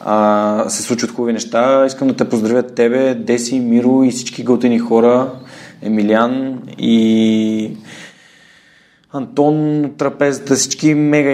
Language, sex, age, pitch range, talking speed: Bulgarian, male, 20-39, 110-130 Hz, 115 wpm